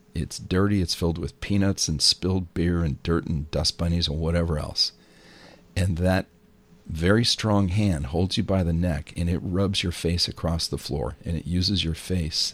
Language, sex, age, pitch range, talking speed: English, male, 40-59, 80-95 Hz, 190 wpm